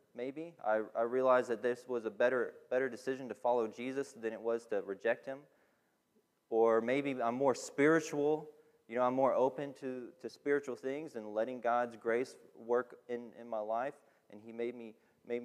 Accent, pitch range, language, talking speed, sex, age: American, 115-135 Hz, English, 185 wpm, male, 30-49